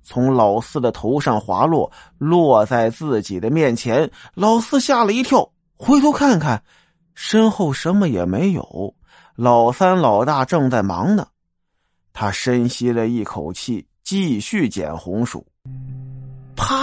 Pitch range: 115-180 Hz